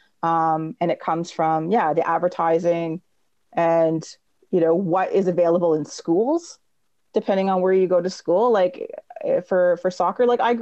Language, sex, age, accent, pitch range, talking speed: English, female, 30-49, American, 160-195 Hz, 165 wpm